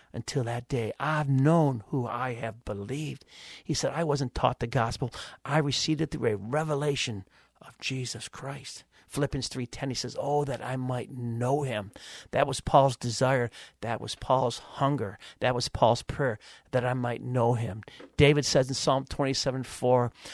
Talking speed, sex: 170 wpm, male